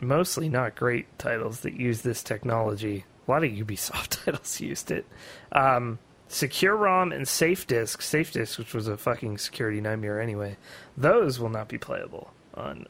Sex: male